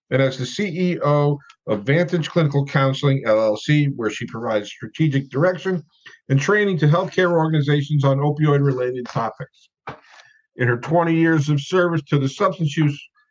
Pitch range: 135-170 Hz